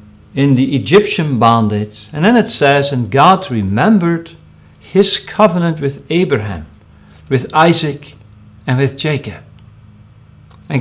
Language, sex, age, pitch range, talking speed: English, male, 50-69, 105-170 Hz, 115 wpm